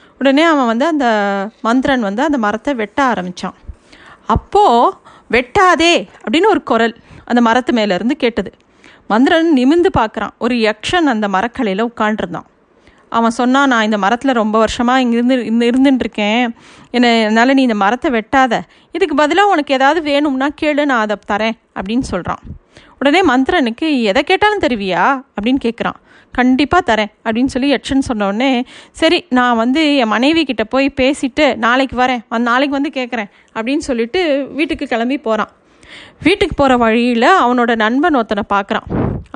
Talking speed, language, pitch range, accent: 145 wpm, Tamil, 225-280 Hz, native